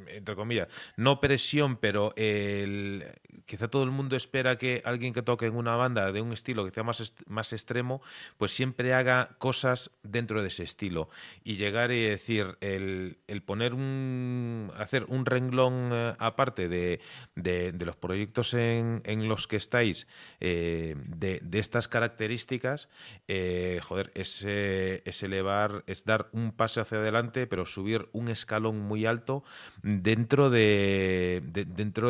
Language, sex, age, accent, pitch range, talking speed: Spanish, male, 30-49, Spanish, 95-120 Hz, 155 wpm